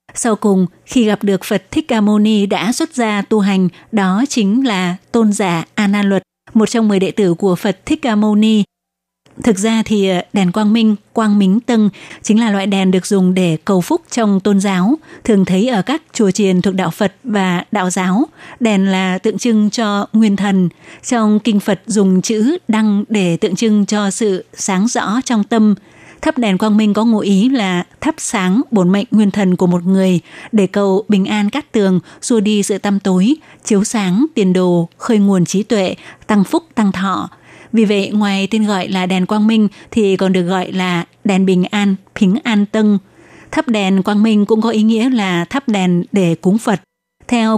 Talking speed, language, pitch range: 205 wpm, Vietnamese, 190-225 Hz